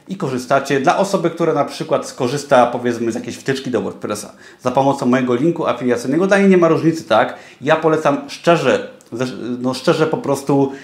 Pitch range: 125-160 Hz